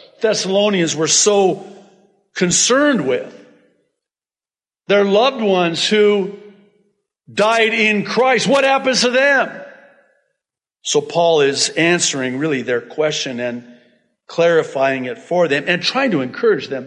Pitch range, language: 155-230 Hz, English